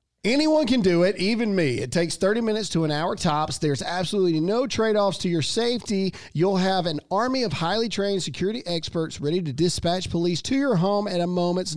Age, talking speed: 40-59, 205 wpm